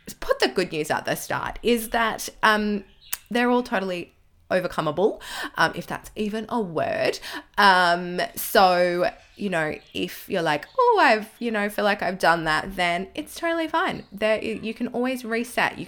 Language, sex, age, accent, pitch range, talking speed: English, female, 20-39, Australian, 170-240 Hz, 175 wpm